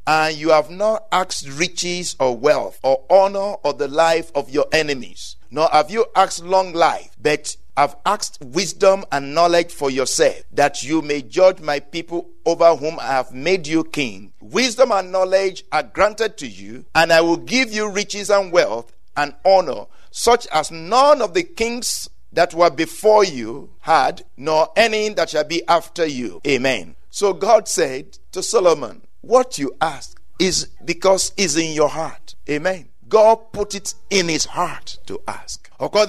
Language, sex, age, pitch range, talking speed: English, male, 50-69, 155-205 Hz, 175 wpm